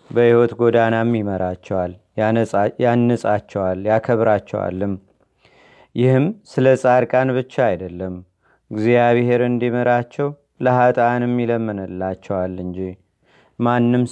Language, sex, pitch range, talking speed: Amharic, male, 115-130 Hz, 70 wpm